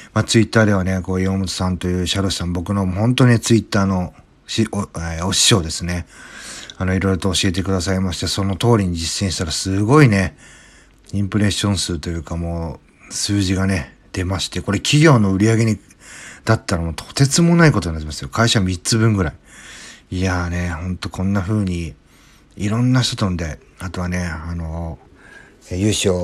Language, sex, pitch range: Japanese, male, 85-110 Hz